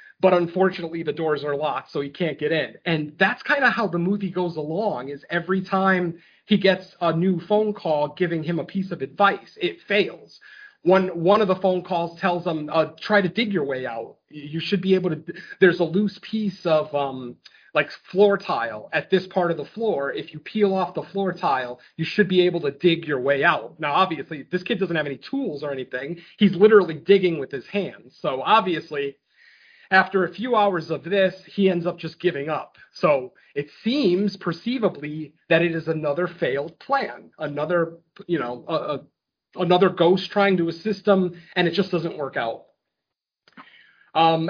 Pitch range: 165-195 Hz